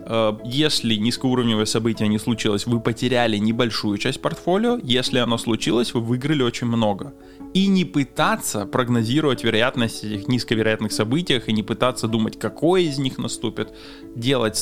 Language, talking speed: Russian, 140 wpm